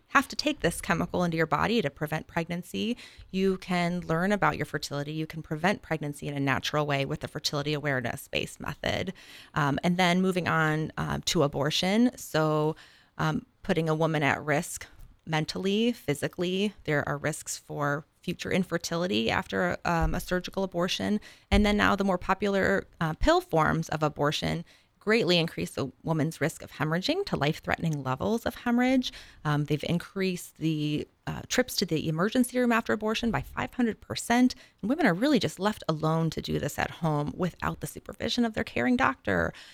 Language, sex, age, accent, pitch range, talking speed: English, female, 20-39, American, 150-200 Hz, 170 wpm